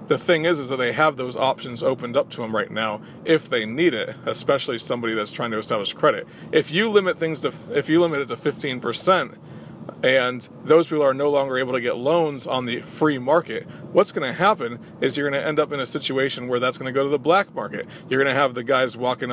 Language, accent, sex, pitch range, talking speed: English, American, male, 125-155 Hz, 250 wpm